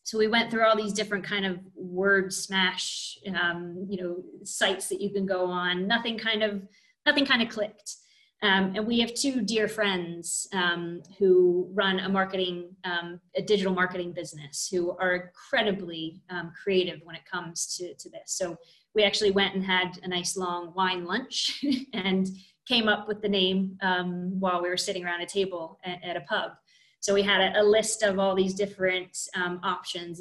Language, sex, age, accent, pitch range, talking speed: English, female, 20-39, American, 180-210 Hz, 190 wpm